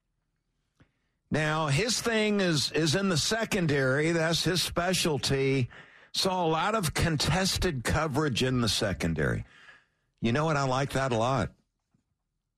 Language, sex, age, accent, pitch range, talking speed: English, male, 50-69, American, 115-165 Hz, 135 wpm